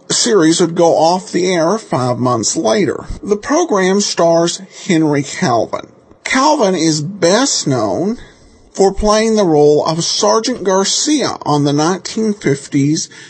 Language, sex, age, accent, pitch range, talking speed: English, male, 50-69, American, 135-195 Hz, 125 wpm